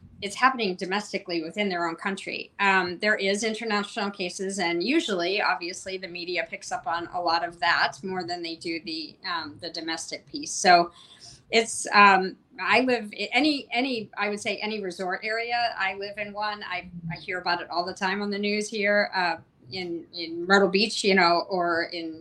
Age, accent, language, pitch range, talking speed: 40-59, American, English, 175-210 Hz, 195 wpm